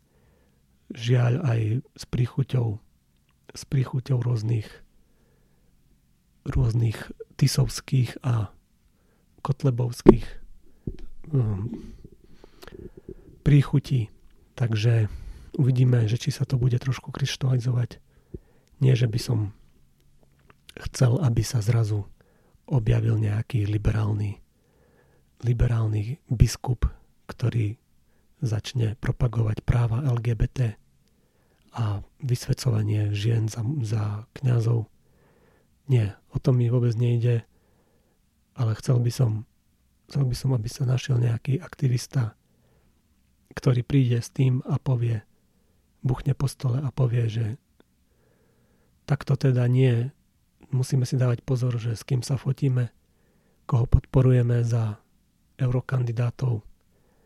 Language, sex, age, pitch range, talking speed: Slovak, male, 40-59, 110-130 Hz, 95 wpm